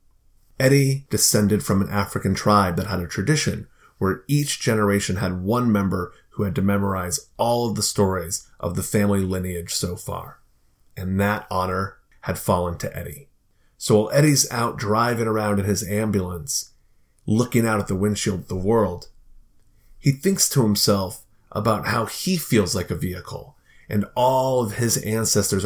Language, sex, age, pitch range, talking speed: English, male, 30-49, 95-120 Hz, 165 wpm